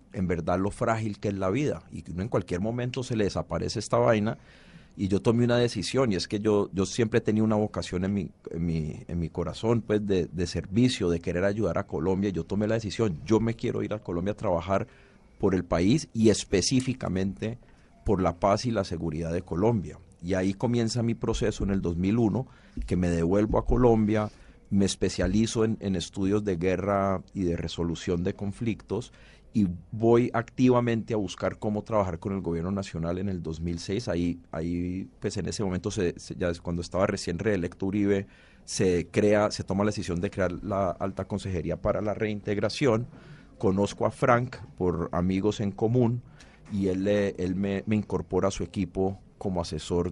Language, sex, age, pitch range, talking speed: Spanish, male, 40-59, 90-110 Hz, 190 wpm